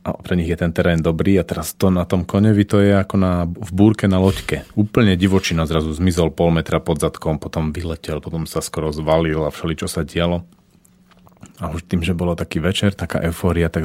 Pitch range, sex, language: 80-95 Hz, male, Slovak